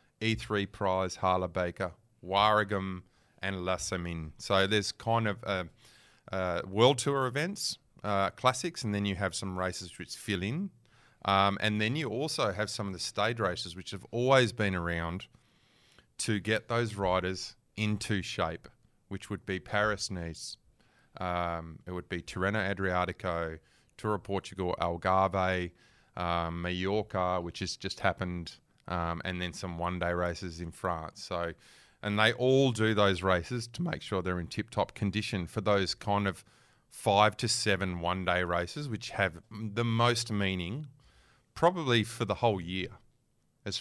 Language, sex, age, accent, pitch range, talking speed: English, male, 30-49, Australian, 90-110 Hz, 155 wpm